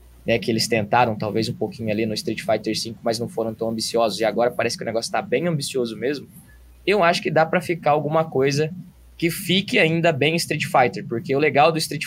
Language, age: Portuguese, 20-39